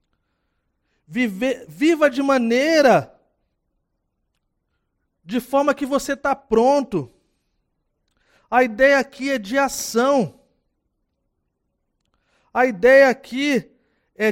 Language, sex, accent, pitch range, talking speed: Portuguese, male, Brazilian, 205-265 Hz, 80 wpm